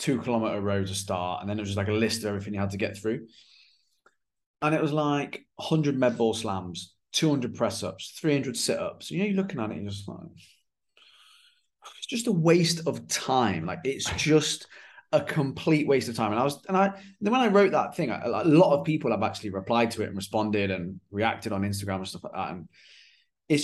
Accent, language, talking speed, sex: British, English, 220 wpm, male